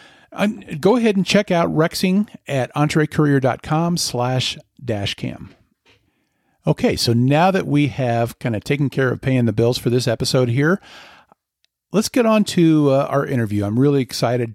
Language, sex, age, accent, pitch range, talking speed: English, male, 50-69, American, 110-155 Hz, 160 wpm